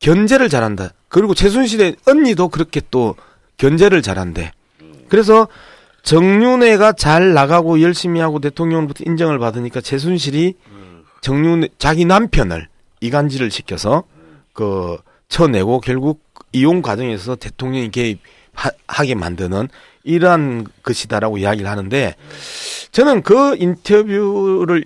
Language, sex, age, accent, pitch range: Korean, male, 40-59, native, 120-195 Hz